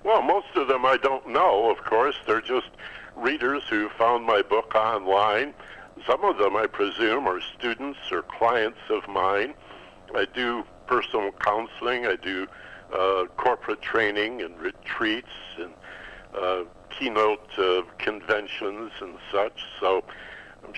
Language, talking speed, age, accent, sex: English, 140 wpm, 60-79, American, male